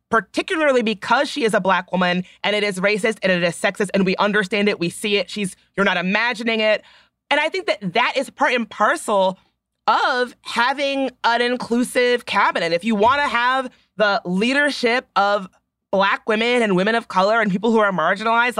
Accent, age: American, 30-49